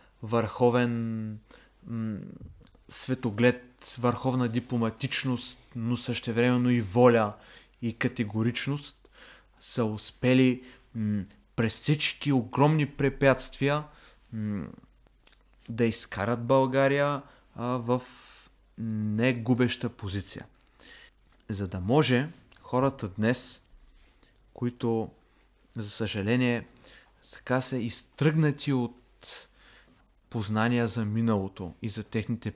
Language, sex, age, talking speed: Bulgarian, male, 30-49, 75 wpm